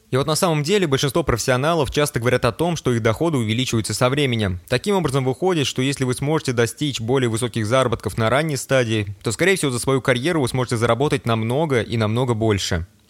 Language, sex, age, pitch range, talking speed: Russian, male, 20-39, 115-145 Hz, 200 wpm